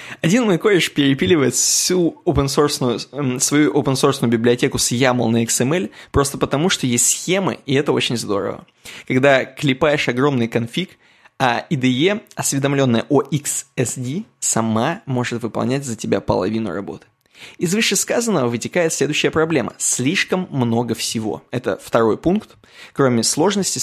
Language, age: Russian, 20-39